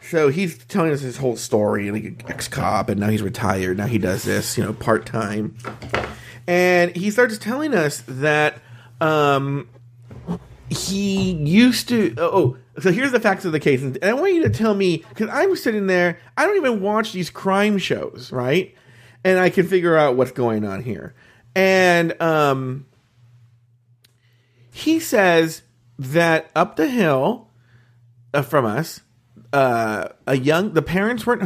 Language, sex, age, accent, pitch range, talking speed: English, male, 40-59, American, 120-170 Hz, 160 wpm